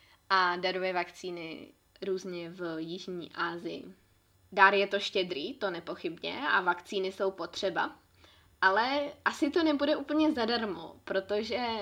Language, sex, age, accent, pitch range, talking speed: Czech, female, 20-39, native, 190-225 Hz, 120 wpm